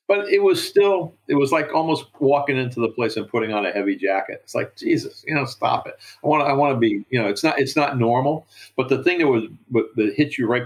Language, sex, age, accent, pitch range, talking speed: English, male, 50-69, American, 105-145 Hz, 235 wpm